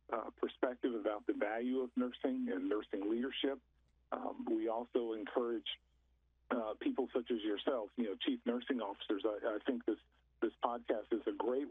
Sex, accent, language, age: male, American, English, 50-69